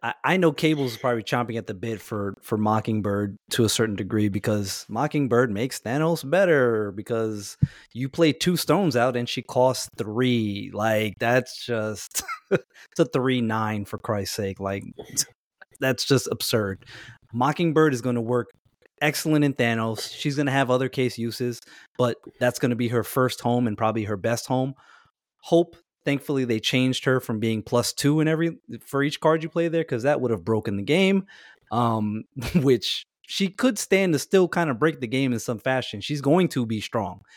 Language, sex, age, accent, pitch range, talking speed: English, male, 20-39, American, 110-140 Hz, 190 wpm